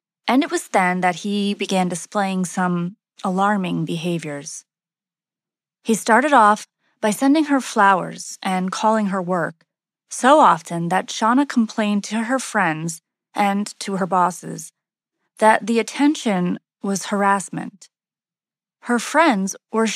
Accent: American